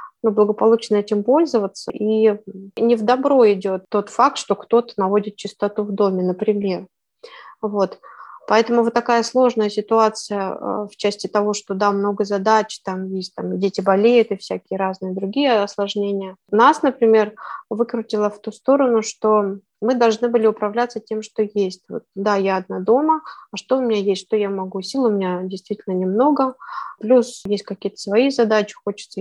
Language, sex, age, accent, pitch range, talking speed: Russian, female, 20-39, native, 200-235 Hz, 160 wpm